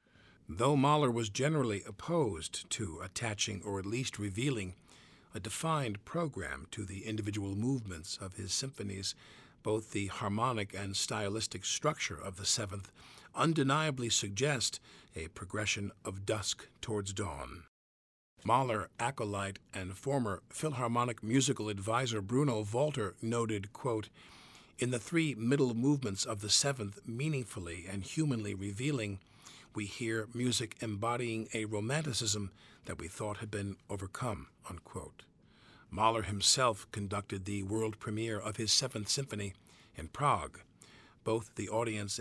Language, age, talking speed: English, 50-69, 125 wpm